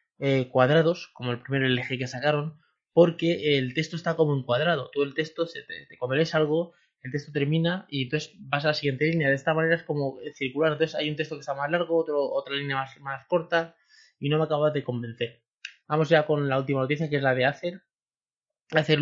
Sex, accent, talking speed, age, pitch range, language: male, Spanish, 230 wpm, 20-39, 140-170 Hz, Spanish